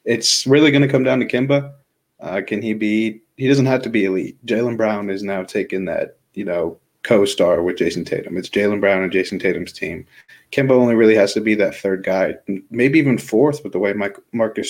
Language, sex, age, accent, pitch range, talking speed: English, male, 30-49, American, 100-120 Hz, 215 wpm